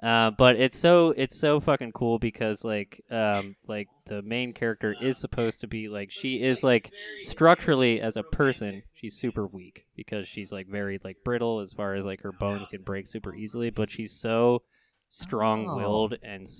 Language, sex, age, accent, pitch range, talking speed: English, male, 20-39, American, 105-125 Hz, 190 wpm